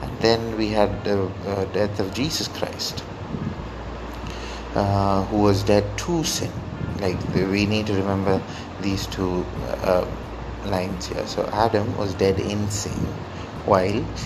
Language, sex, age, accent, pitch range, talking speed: English, male, 30-49, Indian, 95-105 Hz, 135 wpm